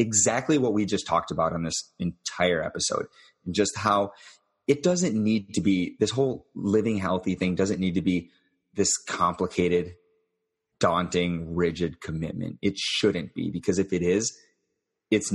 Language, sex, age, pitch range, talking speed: English, male, 30-49, 85-100 Hz, 155 wpm